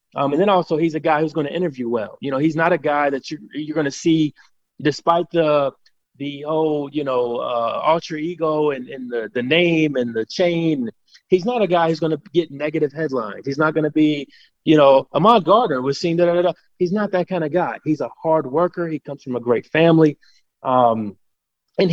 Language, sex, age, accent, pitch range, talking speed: English, male, 30-49, American, 140-170 Hz, 220 wpm